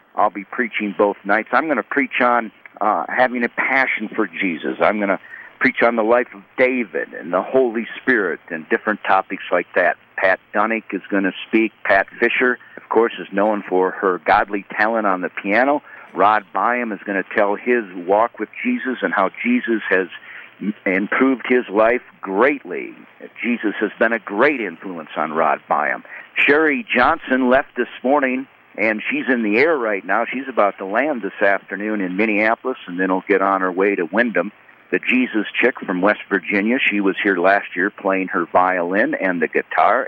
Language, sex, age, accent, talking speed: English, male, 60-79, American, 190 wpm